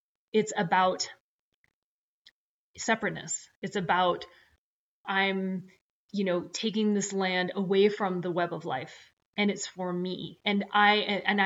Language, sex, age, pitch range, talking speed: English, female, 30-49, 180-205 Hz, 125 wpm